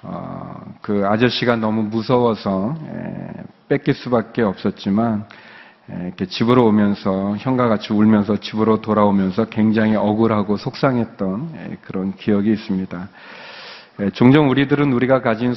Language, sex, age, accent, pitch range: Korean, male, 40-59, native, 105-140 Hz